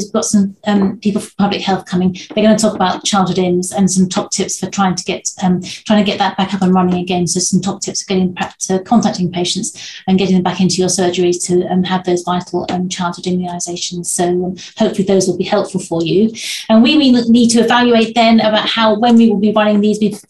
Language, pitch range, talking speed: English, 185-205 Hz, 240 wpm